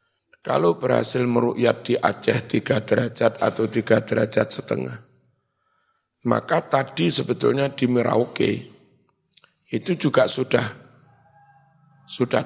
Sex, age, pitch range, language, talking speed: male, 50-69, 115-155 Hz, Indonesian, 95 wpm